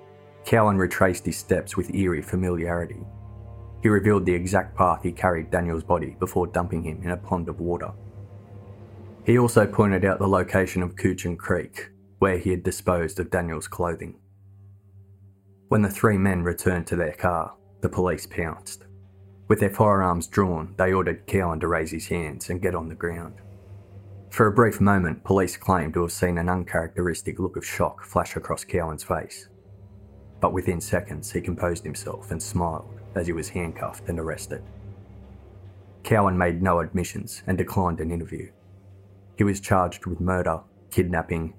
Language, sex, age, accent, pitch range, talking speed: English, male, 20-39, Australian, 90-100 Hz, 165 wpm